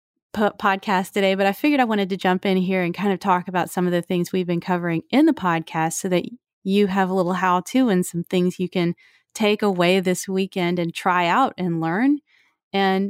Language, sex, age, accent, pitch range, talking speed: English, female, 30-49, American, 180-225 Hz, 220 wpm